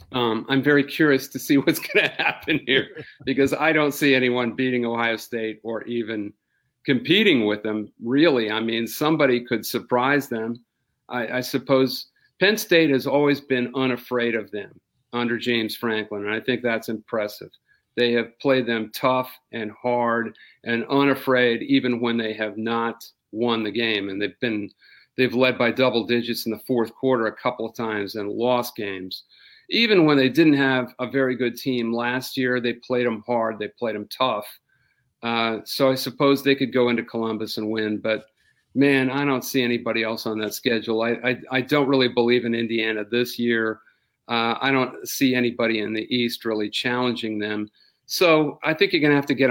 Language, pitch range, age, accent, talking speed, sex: English, 115-130 Hz, 50-69, American, 190 wpm, male